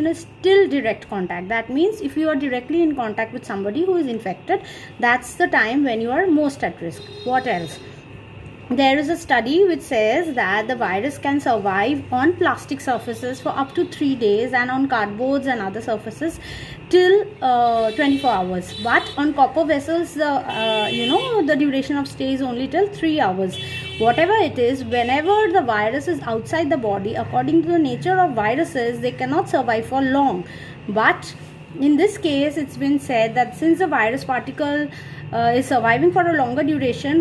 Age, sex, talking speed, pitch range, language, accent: 30-49, female, 185 wpm, 245-330 Hz, English, Indian